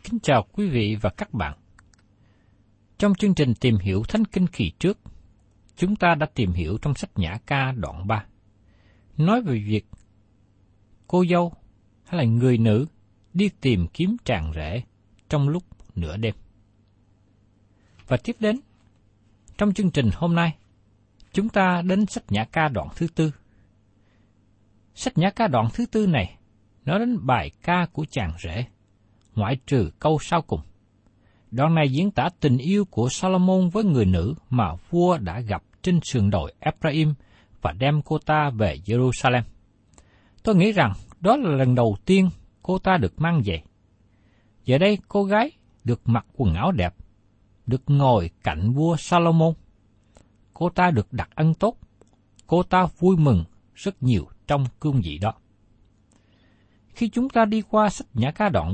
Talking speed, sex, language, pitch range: 160 wpm, male, Vietnamese, 105-165 Hz